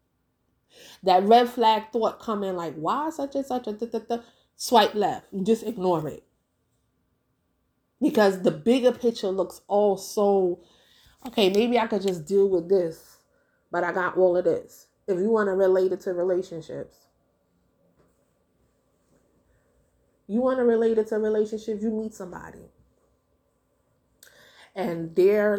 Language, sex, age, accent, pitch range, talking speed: English, female, 30-49, American, 180-230 Hz, 135 wpm